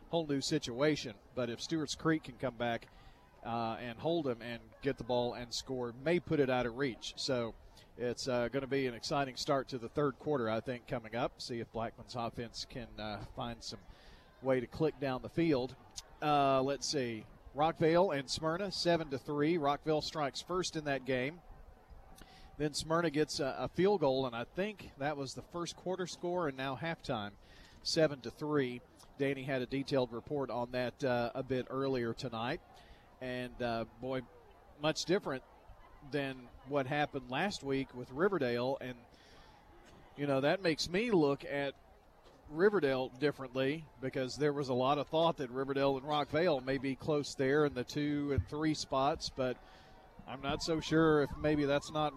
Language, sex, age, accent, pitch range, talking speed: English, male, 40-59, American, 125-150 Hz, 180 wpm